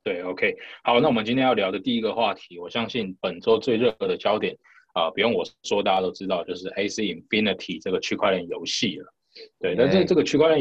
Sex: male